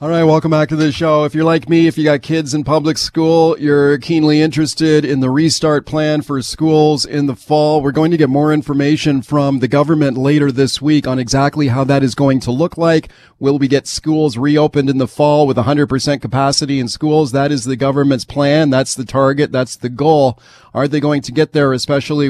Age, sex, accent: 40-59, male, American